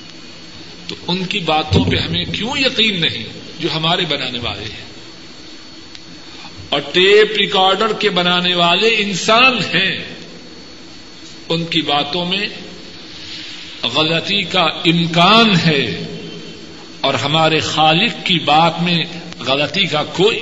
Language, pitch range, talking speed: Urdu, 150-190 Hz, 115 wpm